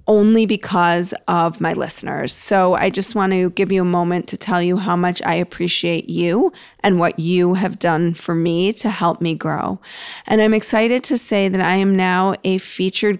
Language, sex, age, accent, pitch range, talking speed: English, female, 30-49, American, 180-210 Hz, 200 wpm